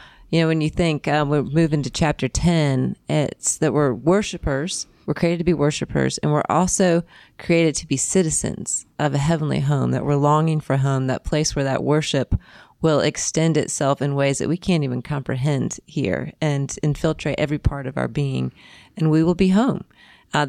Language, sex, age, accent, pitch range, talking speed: English, female, 30-49, American, 140-175 Hz, 190 wpm